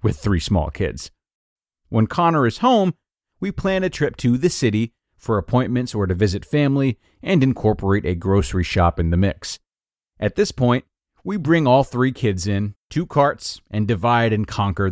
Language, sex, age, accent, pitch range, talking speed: English, male, 40-59, American, 100-145 Hz, 175 wpm